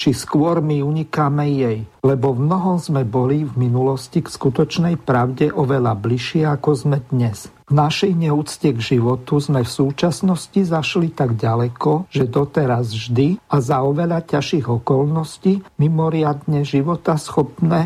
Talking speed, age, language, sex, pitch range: 140 wpm, 50-69, Slovak, male, 130-160 Hz